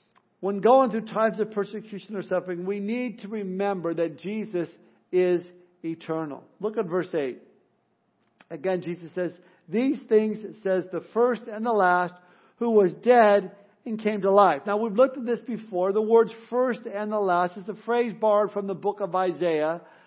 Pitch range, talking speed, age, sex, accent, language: 190-225 Hz, 180 wpm, 50-69, male, American, English